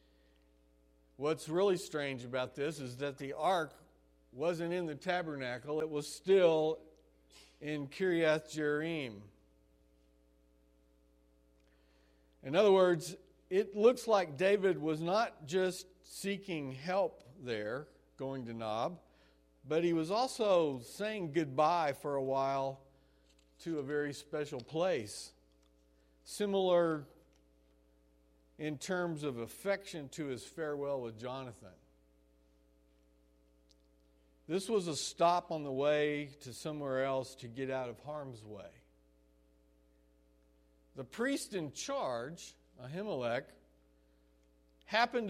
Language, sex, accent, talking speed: English, male, American, 105 wpm